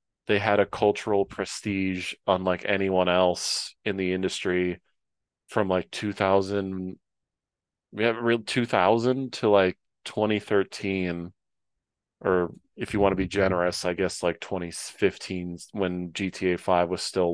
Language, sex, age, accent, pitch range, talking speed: English, male, 30-49, American, 90-105 Hz, 130 wpm